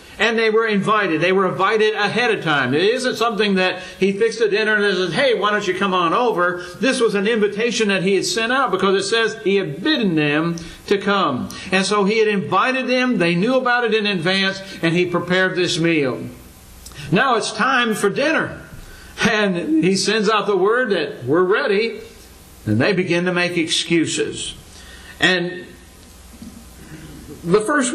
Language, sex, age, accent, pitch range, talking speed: English, male, 60-79, American, 160-220 Hz, 185 wpm